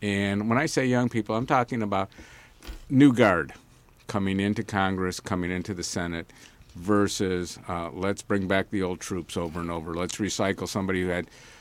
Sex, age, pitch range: male, 50-69, 95-120 Hz